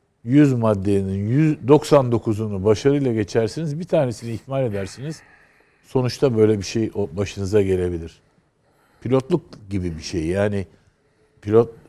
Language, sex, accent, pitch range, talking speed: Turkish, male, native, 100-135 Hz, 105 wpm